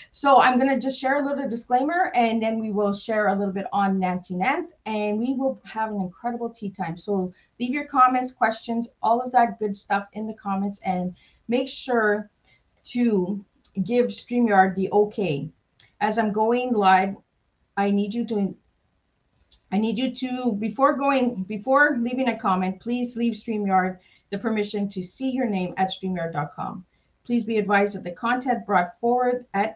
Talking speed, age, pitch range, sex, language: 175 wpm, 40-59, 190-235 Hz, female, English